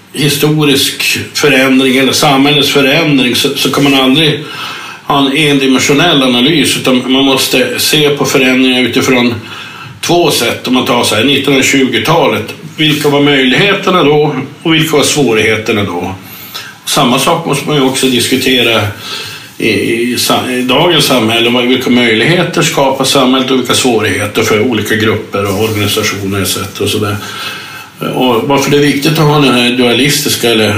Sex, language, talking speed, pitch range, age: male, English, 145 wpm, 115-145 Hz, 50-69